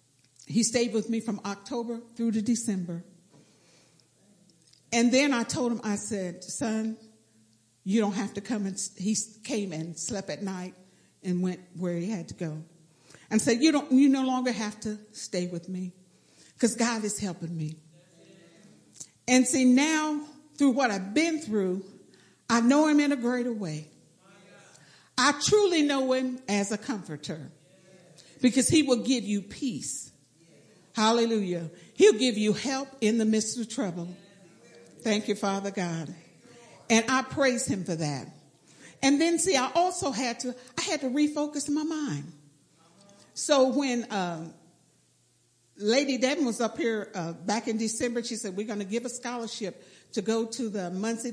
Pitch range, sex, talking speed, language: 180-255 Hz, female, 165 wpm, English